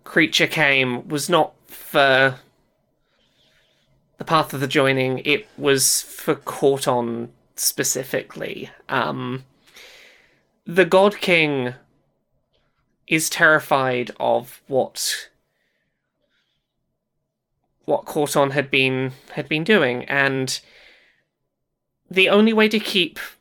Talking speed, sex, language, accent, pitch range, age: 90 wpm, male, English, British, 140-190 Hz, 20-39